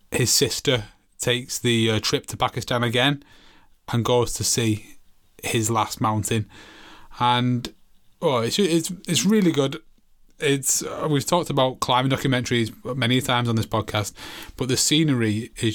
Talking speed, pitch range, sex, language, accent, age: 150 wpm, 110-130 Hz, male, English, British, 20-39